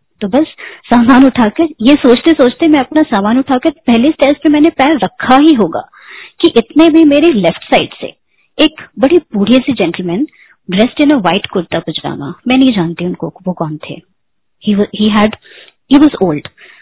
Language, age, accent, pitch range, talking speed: Hindi, 30-49, native, 195-280 Hz, 170 wpm